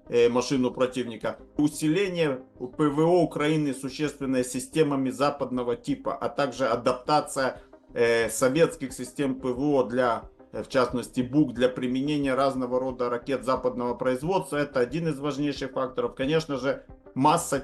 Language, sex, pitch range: Russian, male, 130-160 Hz